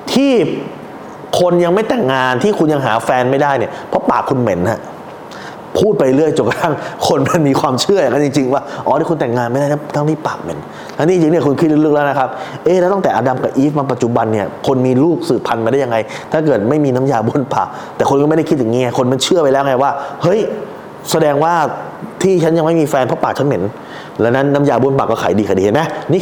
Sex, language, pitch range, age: male, Thai, 125-155 Hz, 20-39